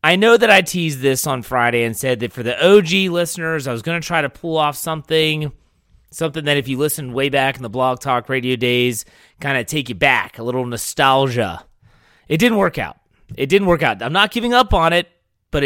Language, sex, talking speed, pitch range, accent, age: English, male, 230 wpm, 120-165 Hz, American, 30-49